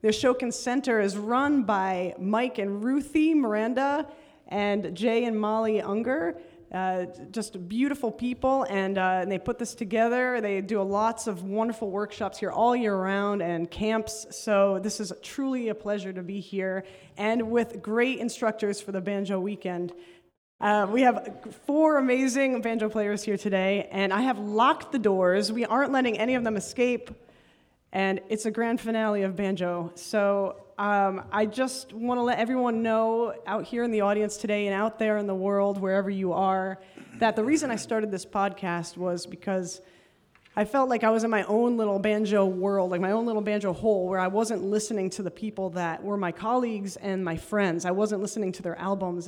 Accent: American